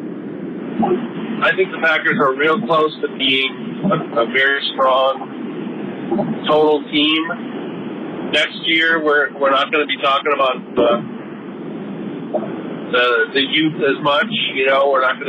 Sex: male